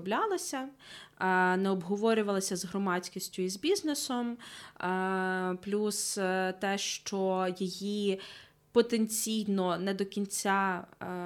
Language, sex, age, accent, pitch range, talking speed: Ukrainian, female, 20-39, native, 175-200 Hz, 80 wpm